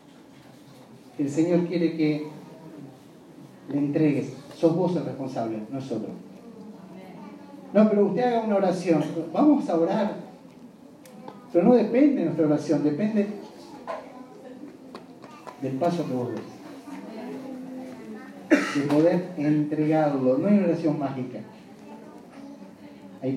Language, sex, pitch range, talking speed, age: Spanish, male, 135-205 Hz, 105 wpm, 40-59